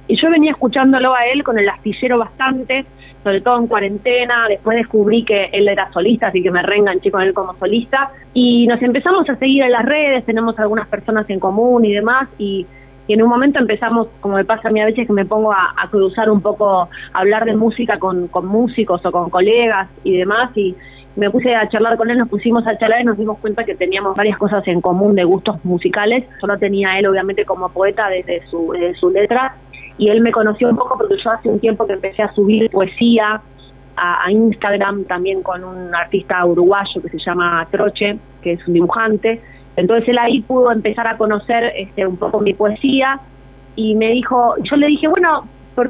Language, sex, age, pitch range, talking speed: Spanish, female, 20-39, 190-240 Hz, 215 wpm